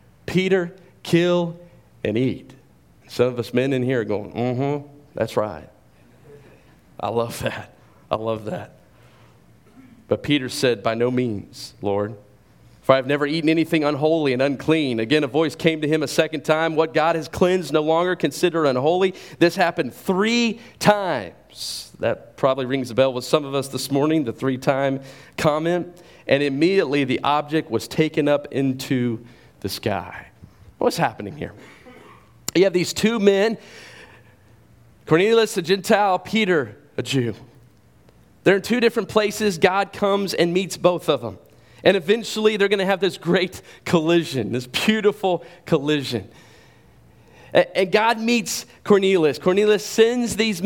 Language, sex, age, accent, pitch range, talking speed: English, male, 40-59, American, 130-190 Hz, 150 wpm